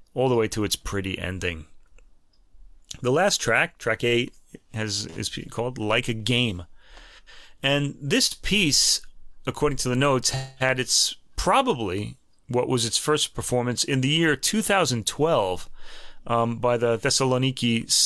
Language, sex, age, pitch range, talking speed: English, male, 30-49, 110-135 Hz, 135 wpm